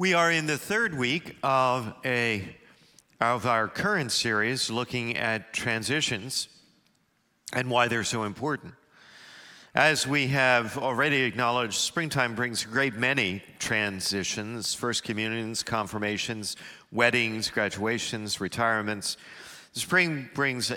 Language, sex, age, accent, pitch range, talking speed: English, male, 50-69, American, 110-125 Hz, 115 wpm